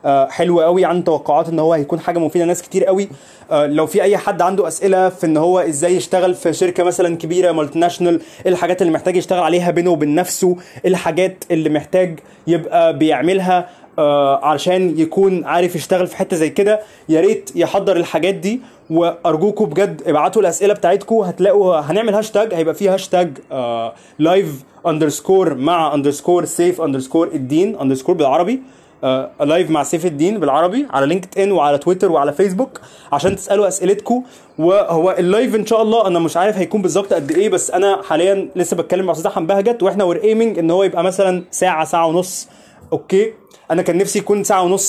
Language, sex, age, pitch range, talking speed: Arabic, male, 20-39, 165-195 Hz, 175 wpm